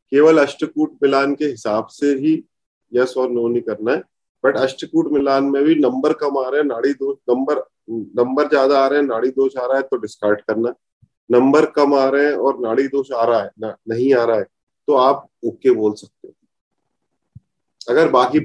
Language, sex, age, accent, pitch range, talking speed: Hindi, male, 30-49, native, 120-150 Hz, 205 wpm